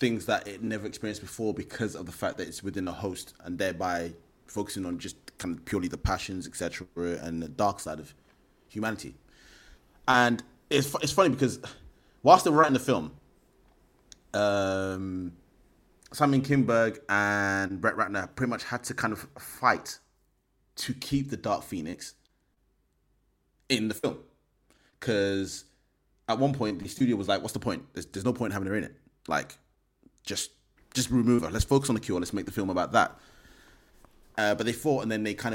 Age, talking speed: 20-39, 180 wpm